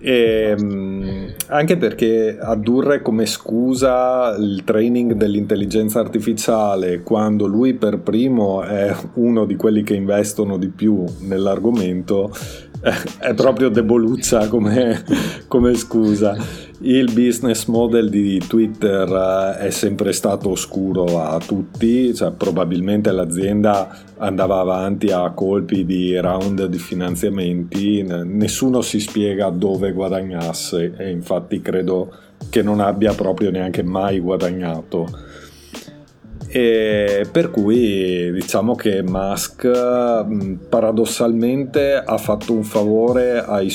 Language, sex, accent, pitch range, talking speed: Italian, male, native, 95-115 Hz, 105 wpm